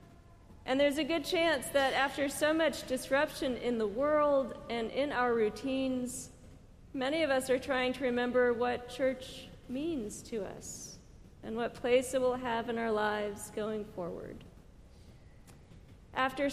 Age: 40-59